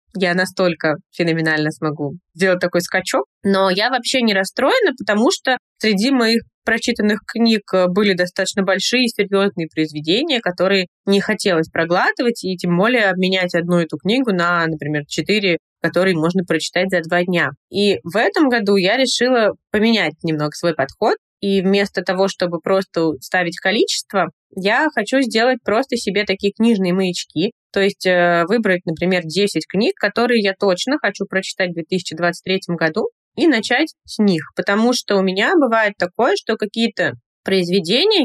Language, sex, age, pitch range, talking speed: Russian, female, 20-39, 175-230 Hz, 150 wpm